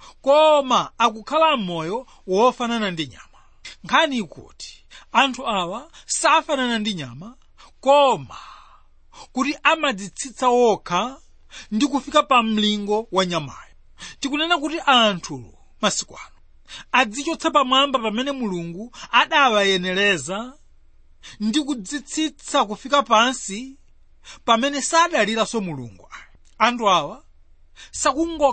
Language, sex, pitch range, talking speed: English, male, 195-275 Hz, 100 wpm